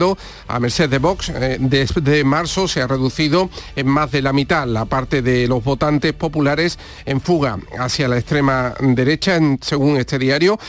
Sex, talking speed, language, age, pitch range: male, 180 wpm, Spanish, 50-69, 135-170 Hz